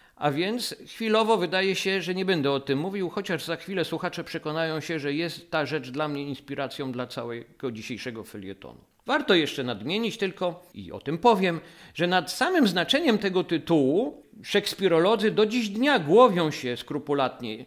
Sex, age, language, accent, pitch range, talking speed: male, 50-69, Polish, native, 150-220 Hz, 165 wpm